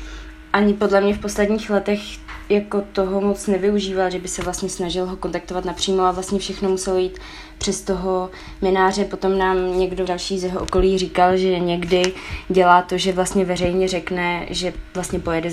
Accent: native